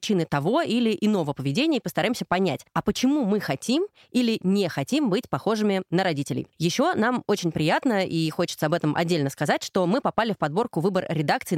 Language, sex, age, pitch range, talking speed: Russian, female, 20-39, 160-210 Hz, 185 wpm